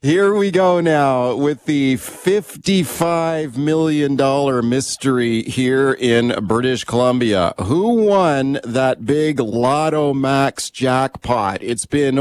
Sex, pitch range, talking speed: male, 135-165 Hz, 110 wpm